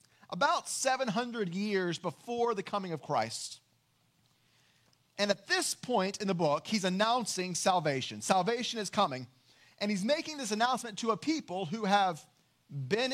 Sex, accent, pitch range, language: male, American, 140-215 Hz, English